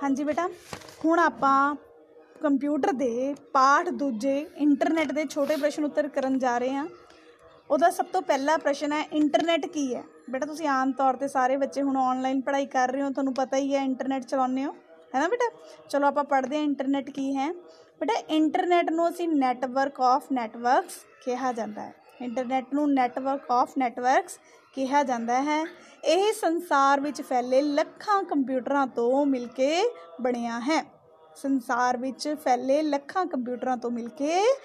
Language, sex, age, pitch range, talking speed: Punjabi, female, 20-39, 260-310 Hz, 150 wpm